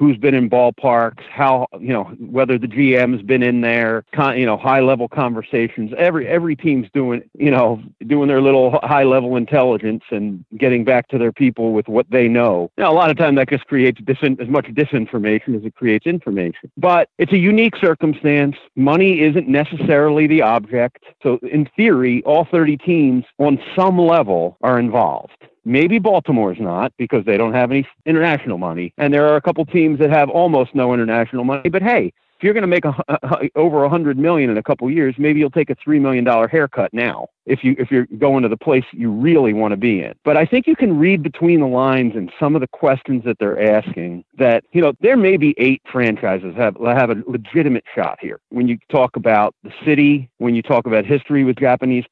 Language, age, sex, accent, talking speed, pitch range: English, 40-59, male, American, 210 wpm, 120-150 Hz